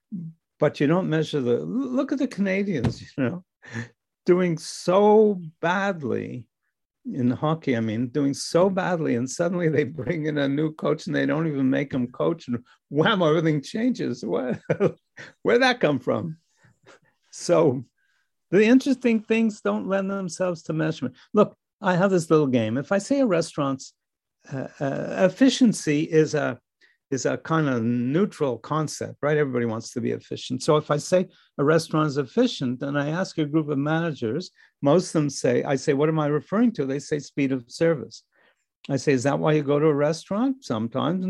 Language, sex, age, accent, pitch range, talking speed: English, male, 60-79, American, 140-185 Hz, 180 wpm